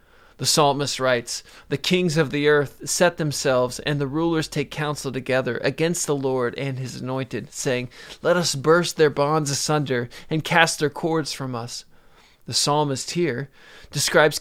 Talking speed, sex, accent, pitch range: 160 wpm, male, American, 130-155 Hz